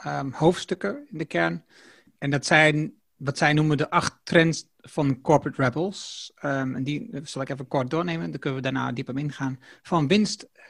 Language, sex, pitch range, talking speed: Dutch, male, 135-170 Hz, 190 wpm